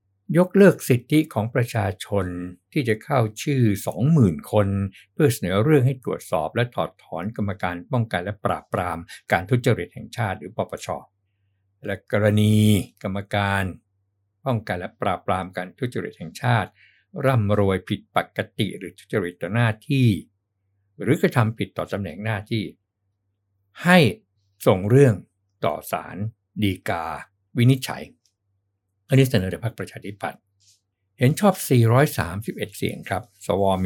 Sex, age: male, 60-79